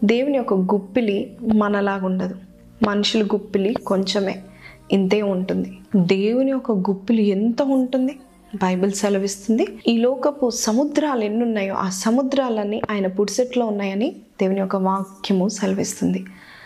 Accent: native